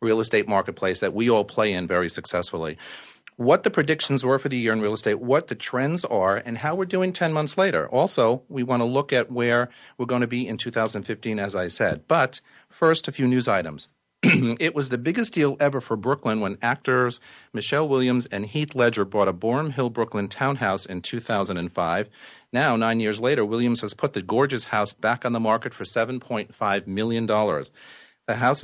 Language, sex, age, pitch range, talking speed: English, male, 40-59, 105-130 Hz, 200 wpm